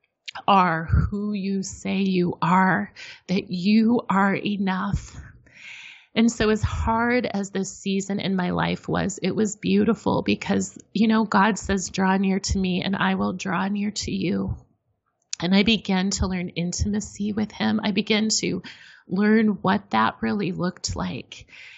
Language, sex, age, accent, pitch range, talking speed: English, female, 30-49, American, 160-200 Hz, 155 wpm